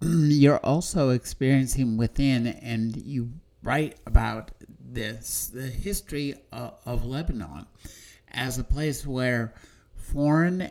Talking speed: 105 wpm